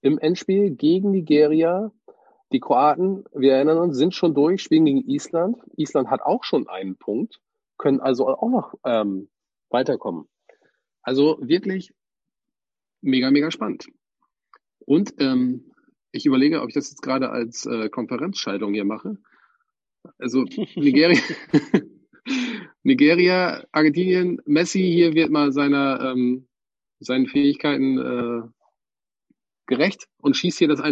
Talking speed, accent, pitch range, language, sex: 125 wpm, German, 125-190 Hz, German, male